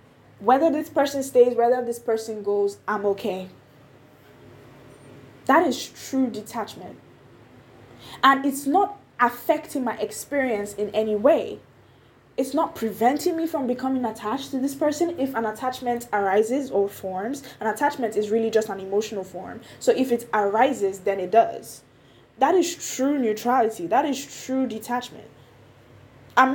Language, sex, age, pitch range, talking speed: English, female, 10-29, 200-260 Hz, 140 wpm